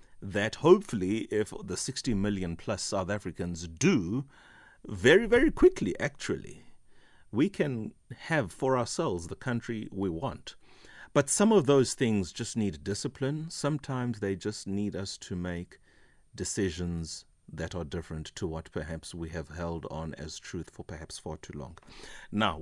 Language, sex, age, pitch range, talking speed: English, male, 30-49, 85-105 Hz, 150 wpm